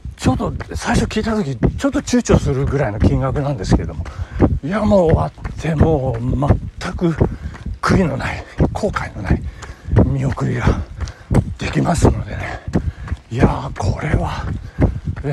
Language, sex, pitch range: Japanese, male, 90-140 Hz